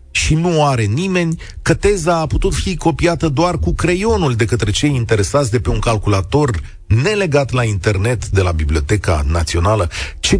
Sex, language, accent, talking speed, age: male, Romanian, native, 165 wpm, 40-59